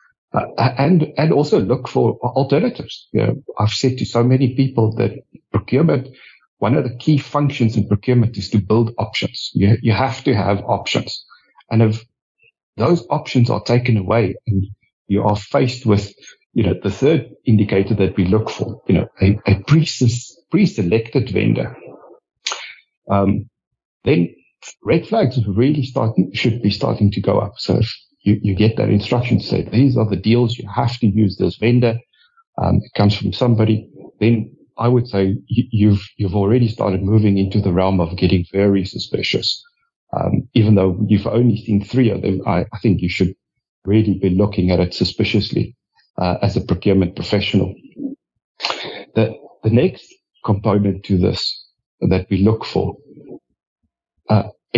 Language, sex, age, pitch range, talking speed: English, male, 60-79, 100-125 Hz, 165 wpm